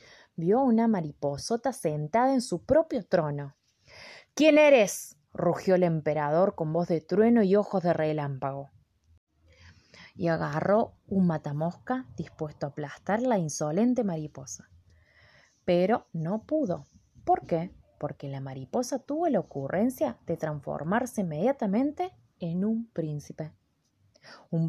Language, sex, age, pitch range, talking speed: Spanish, female, 20-39, 150-220 Hz, 120 wpm